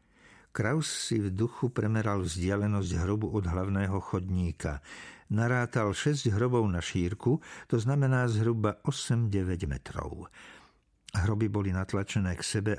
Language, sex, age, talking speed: Slovak, male, 50-69, 115 wpm